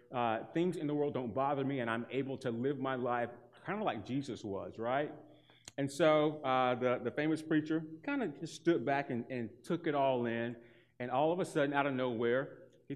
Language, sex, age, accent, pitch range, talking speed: English, male, 30-49, American, 130-165 Hz, 220 wpm